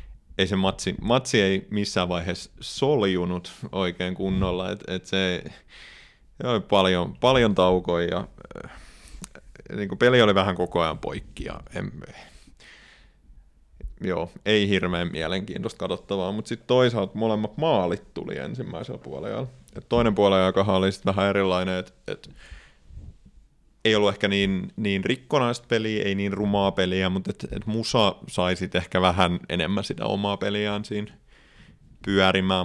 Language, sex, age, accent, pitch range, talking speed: Finnish, male, 30-49, native, 90-105 Hz, 135 wpm